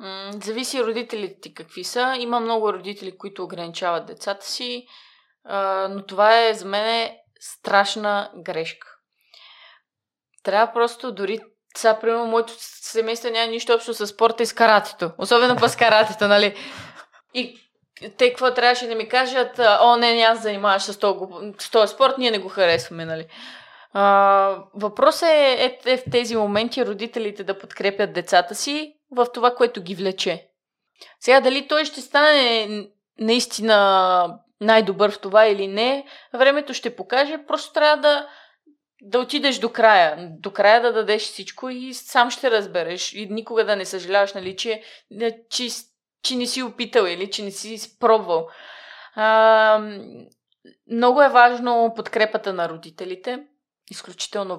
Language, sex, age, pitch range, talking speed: Bulgarian, female, 20-39, 200-245 Hz, 145 wpm